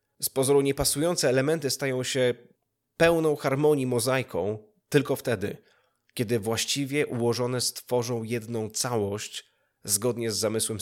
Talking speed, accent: 110 wpm, native